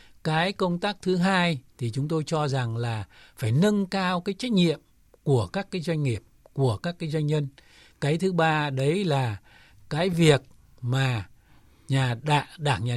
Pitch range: 130-170 Hz